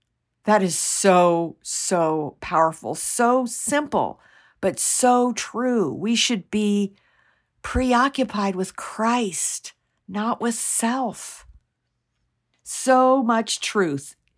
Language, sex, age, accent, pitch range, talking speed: English, female, 50-69, American, 155-215 Hz, 90 wpm